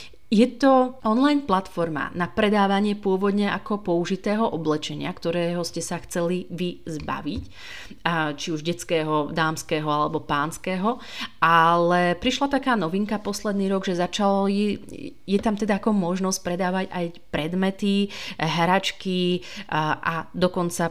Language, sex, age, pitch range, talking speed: Slovak, female, 30-49, 170-195 Hz, 120 wpm